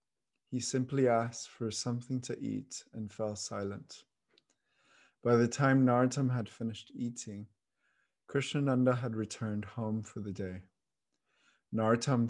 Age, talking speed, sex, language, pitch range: 20-39, 120 wpm, male, English, 110-130 Hz